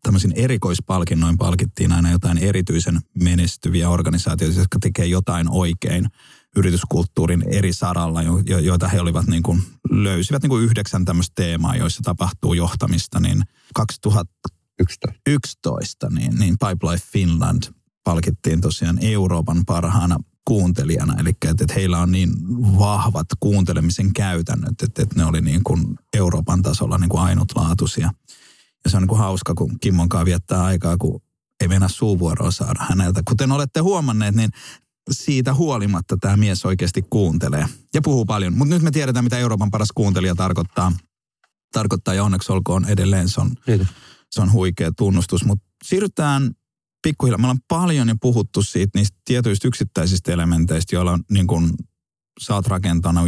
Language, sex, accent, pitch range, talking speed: Finnish, male, native, 85-115 Hz, 135 wpm